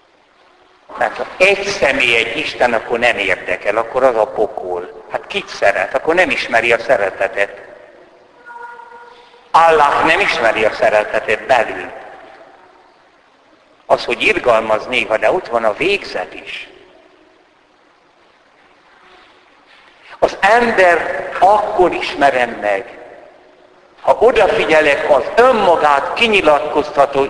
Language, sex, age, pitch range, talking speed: Hungarian, male, 60-79, 140-220 Hz, 105 wpm